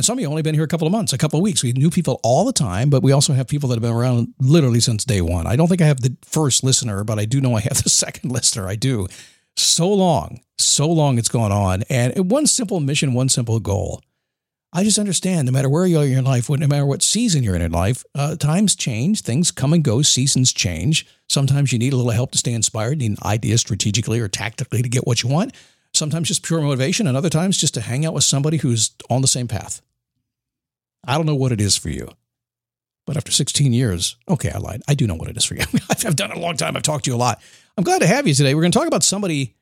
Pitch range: 115-155 Hz